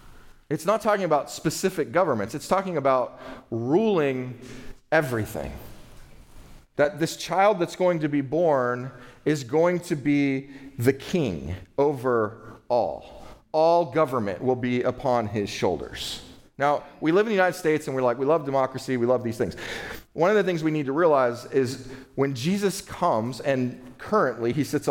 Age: 40-59